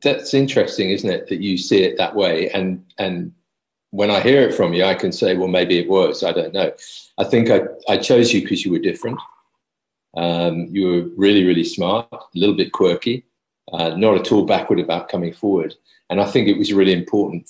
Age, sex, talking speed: 40-59, male, 215 wpm